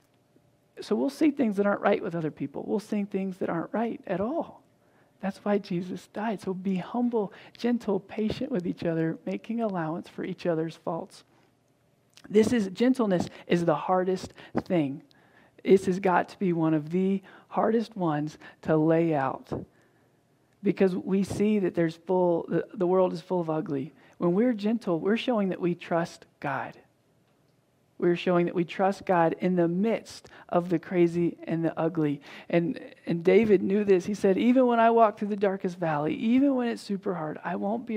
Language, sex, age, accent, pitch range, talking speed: English, male, 40-59, American, 170-215 Hz, 180 wpm